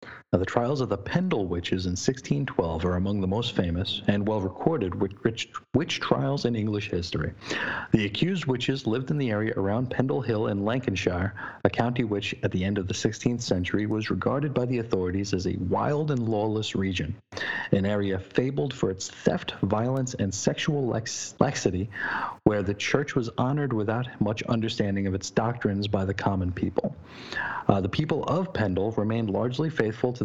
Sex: male